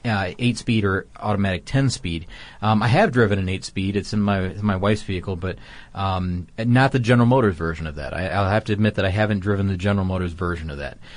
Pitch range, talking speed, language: 95-120 Hz, 225 wpm, English